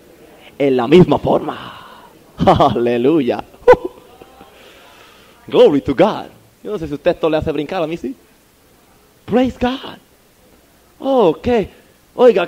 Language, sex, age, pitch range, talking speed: Spanish, male, 30-49, 180-280 Hz, 130 wpm